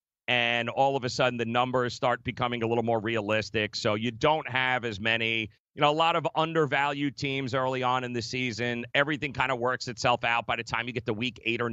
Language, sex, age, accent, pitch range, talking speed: English, male, 40-59, American, 115-145 Hz, 235 wpm